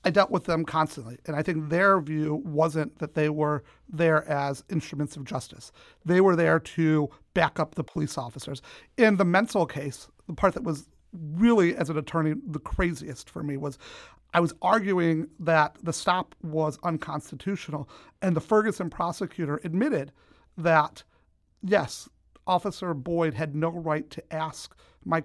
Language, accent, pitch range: English, American, 155-185 Hz